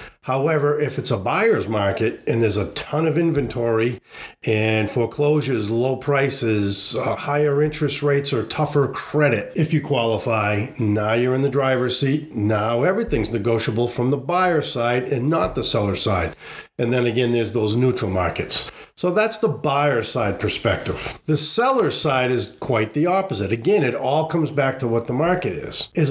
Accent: American